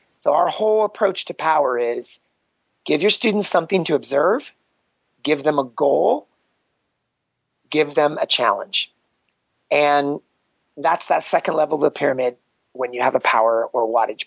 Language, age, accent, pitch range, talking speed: English, 30-49, American, 125-195 Hz, 150 wpm